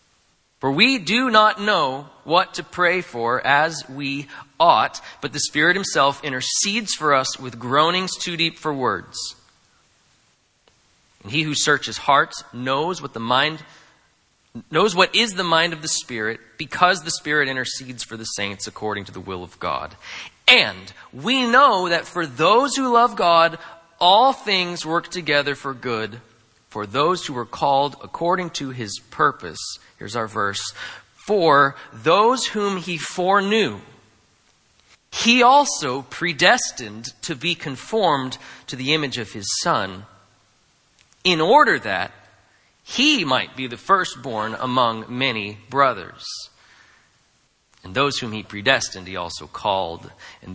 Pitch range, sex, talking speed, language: 110-170 Hz, male, 140 wpm, English